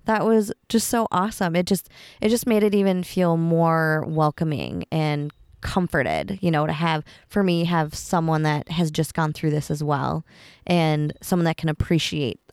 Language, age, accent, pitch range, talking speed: English, 20-39, American, 155-200 Hz, 180 wpm